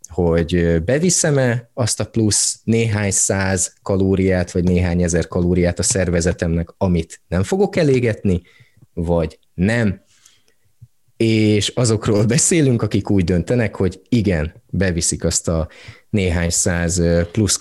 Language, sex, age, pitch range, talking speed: Hungarian, male, 30-49, 90-115 Hz, 115 wpm